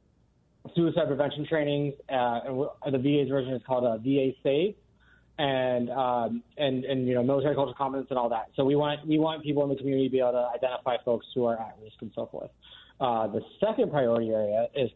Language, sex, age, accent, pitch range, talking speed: English, male, 20-39, American, 130-155 Hz, 210 wpm